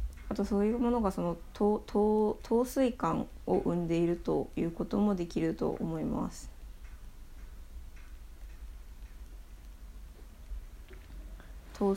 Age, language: 20-39, Japanese